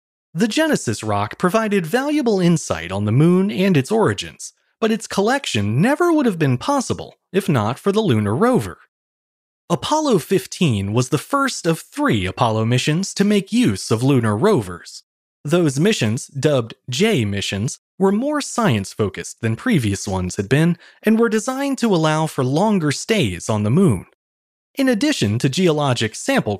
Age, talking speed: 30-49, 155 wpm